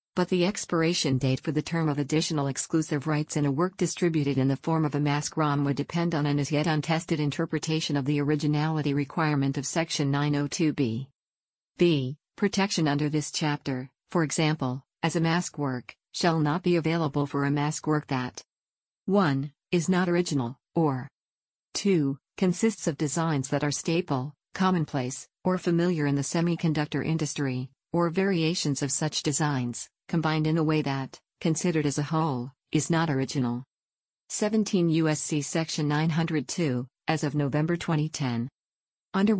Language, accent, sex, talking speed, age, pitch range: English, American, female, 155 wpm, 50-69, 140-165 Hz